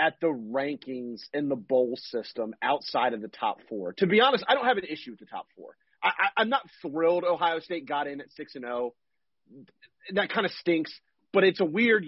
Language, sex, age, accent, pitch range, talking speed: English, male, 30-49, American, 155-235 Hz, 225 wpm